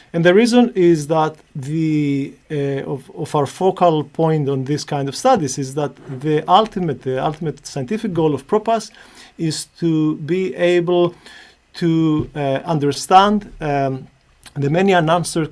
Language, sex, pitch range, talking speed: English, male, 140-175 Hz, 145 wpm